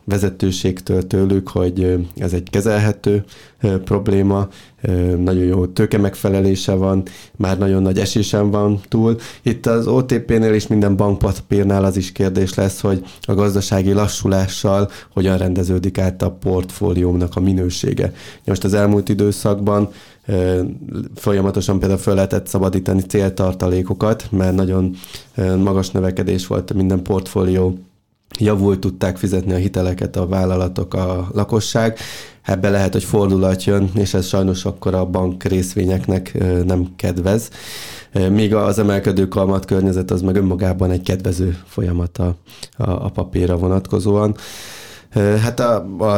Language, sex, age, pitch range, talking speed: Hungarian, male, 20-39, 95-105 Hz, 130 wpm